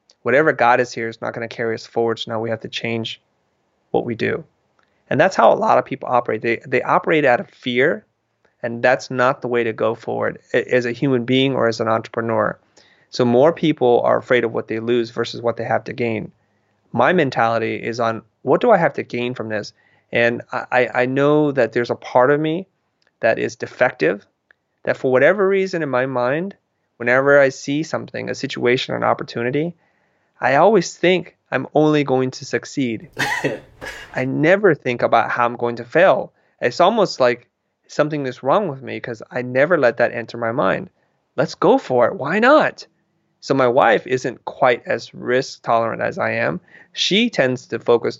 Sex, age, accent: male, 30-49, American